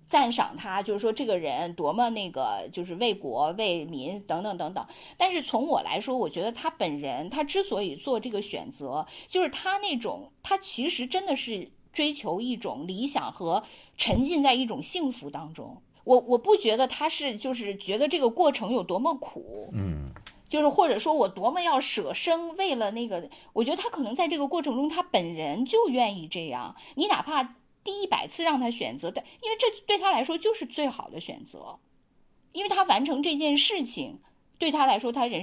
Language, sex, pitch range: Chinese, female, 230-315 Hz